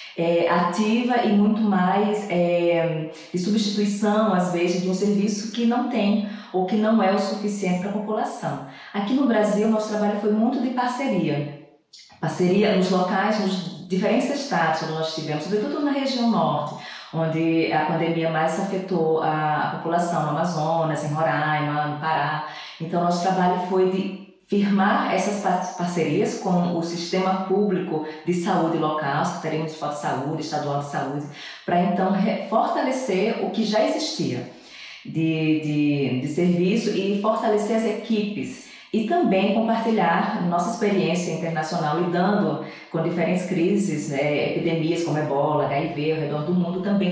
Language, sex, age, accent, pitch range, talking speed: Portuguese, female, 20-39, Brazilian, 160-205 Hz, 150 wpm